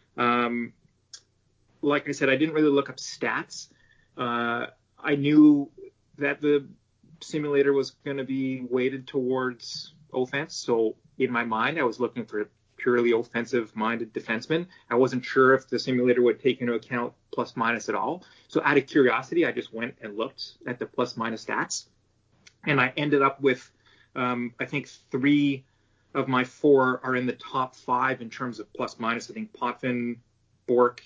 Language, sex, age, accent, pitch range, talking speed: English, male, 30-49, American, 115-135 Hz, 175 wpm